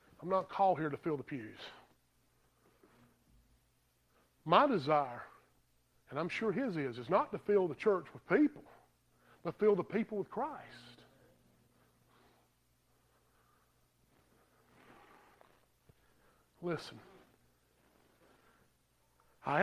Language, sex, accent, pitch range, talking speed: English, male, American, 135-195 Hz, 95 wpm